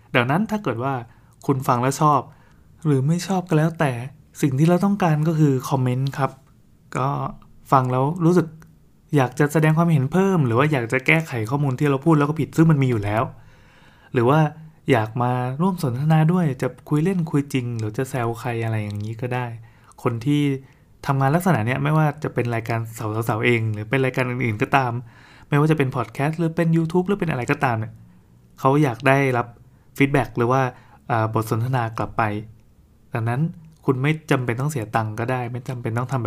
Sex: male